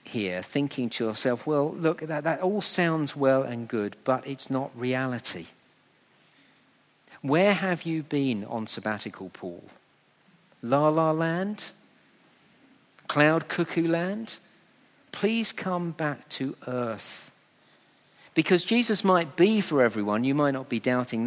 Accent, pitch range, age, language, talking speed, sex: British, 115-185 Hz, 50-69, English, 130 wpm, male